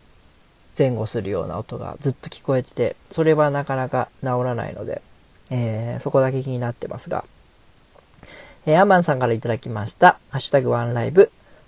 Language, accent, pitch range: Japanese, native, 125-155 Hz